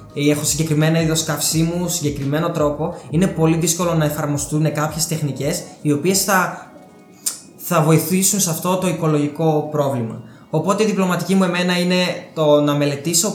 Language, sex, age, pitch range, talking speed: Greek, male, 20-39, 145-180 Hz, 150 wpm